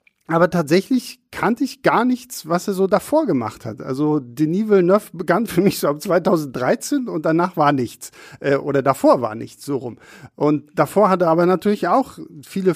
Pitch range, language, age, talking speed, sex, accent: 145-185 Hz, German, 50-69, 185 wpm, male, German